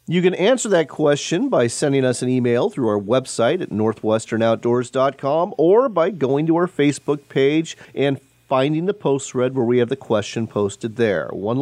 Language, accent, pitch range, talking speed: English, American, 115-165 Hz, 180 wpm